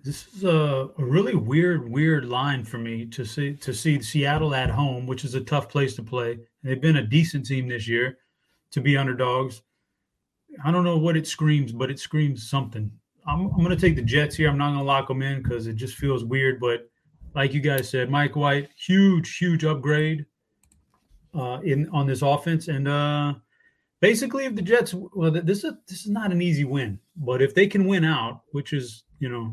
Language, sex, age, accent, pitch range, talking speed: English, male, 30-49, American, 130-160 Hz, 215 wpm